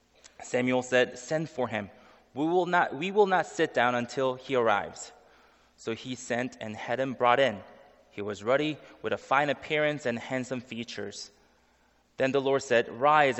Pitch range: 115-150 Hz